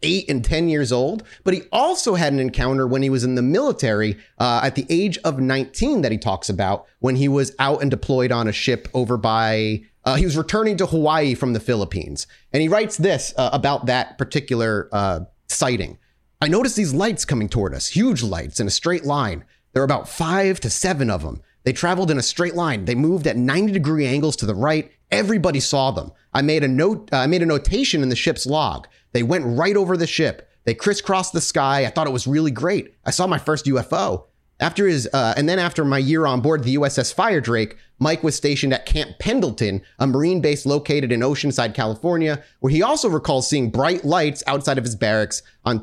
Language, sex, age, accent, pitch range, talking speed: English, male, 30-49, American, 120-160 Hz, 220 wpm